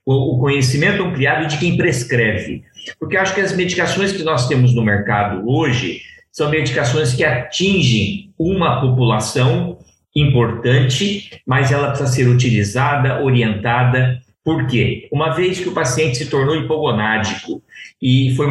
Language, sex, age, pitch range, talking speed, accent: Portuguese, male, 50-69, 120-160 Hz, 135 wpm, Brazilian